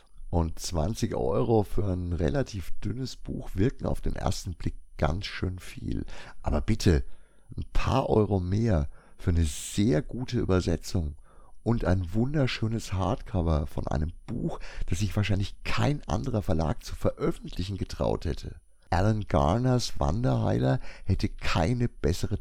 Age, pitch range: 60-79, 75-105 Hz